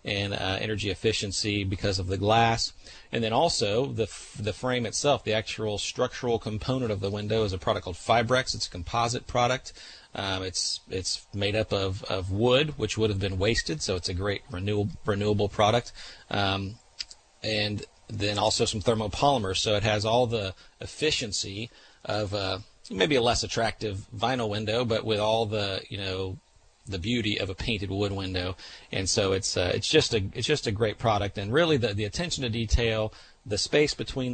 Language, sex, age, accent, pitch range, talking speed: English, male, 40-59, American, 95-115 Hz, 185 wpm